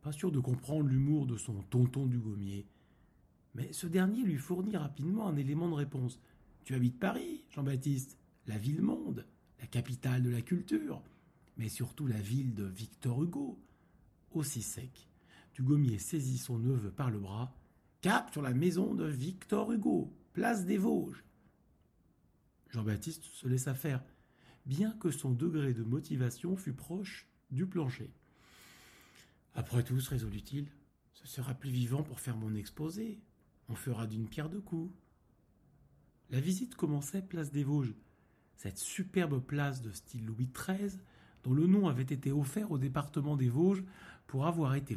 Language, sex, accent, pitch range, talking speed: French, male, French, 125-165 Hz, 160 wpm